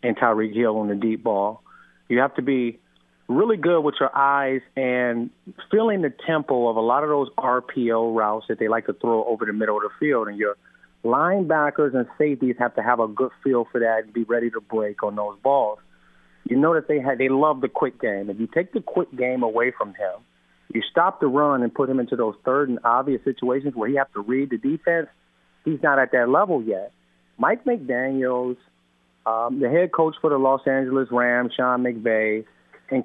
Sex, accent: male, American